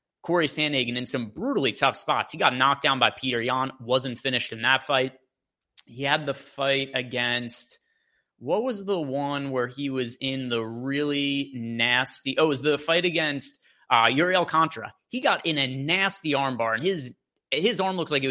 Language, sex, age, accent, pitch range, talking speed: English, male, 30-49, American, 125-155 Hz, 185 wpm